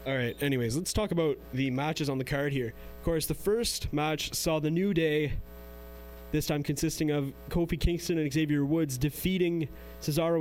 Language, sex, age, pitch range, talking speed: English, male, 20-39, 130-165 Hz, 180 wpm